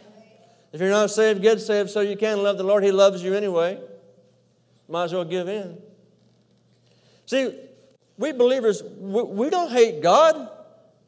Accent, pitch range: American, 190-260 Hz